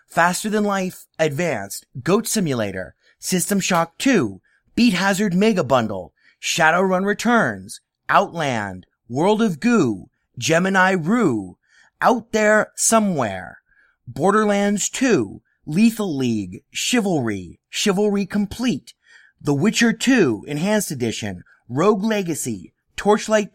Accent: American